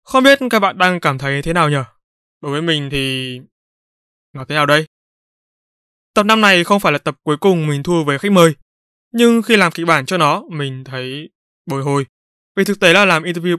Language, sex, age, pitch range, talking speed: Vietnamese, male, 20-39, 145-190 Hz, 215 wpm